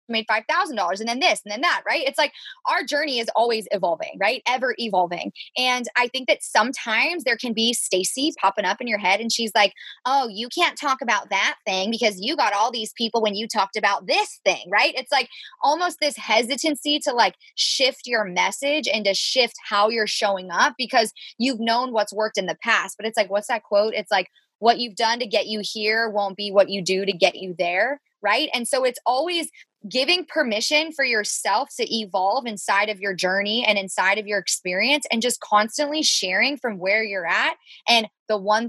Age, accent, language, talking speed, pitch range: 20-39, American, English, 210 wpm, 205-265 Hz